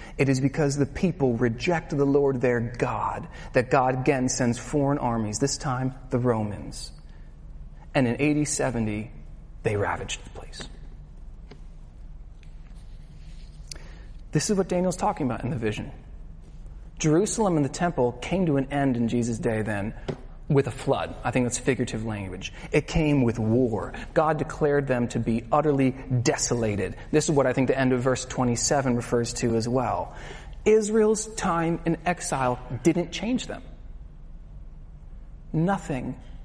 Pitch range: 125-185 Hz